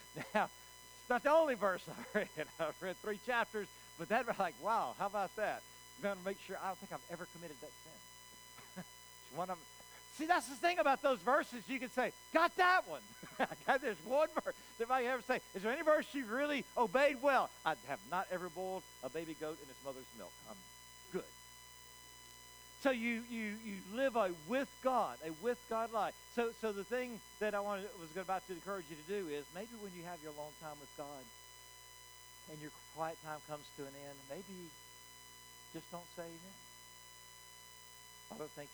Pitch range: 145-230 Hz